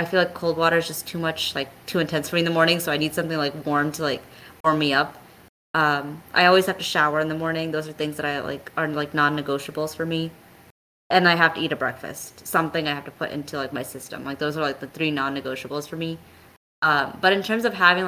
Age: 20-39